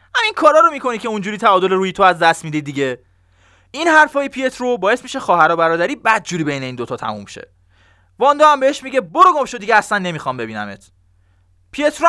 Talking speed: 190 wpm